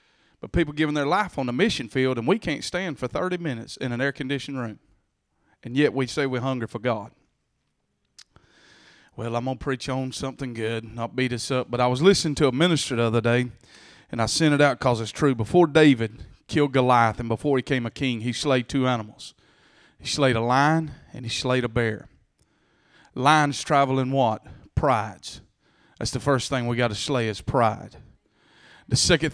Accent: American